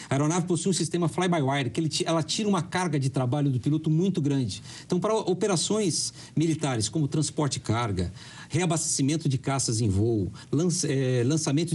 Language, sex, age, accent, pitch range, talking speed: Portuguese, male, 50-69, Brazilian, 130-165 Hz, 155 wpm